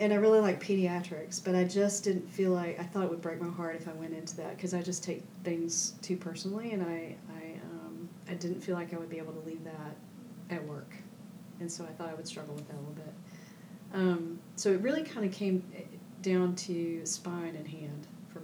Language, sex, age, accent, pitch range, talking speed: English, female, 40-59, American, 170-195 Hz, 235 wpm